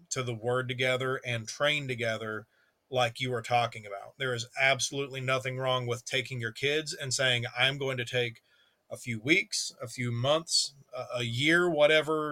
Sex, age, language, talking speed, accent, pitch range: male, 40-59, English, 175 wpm, American, 115-130 Hz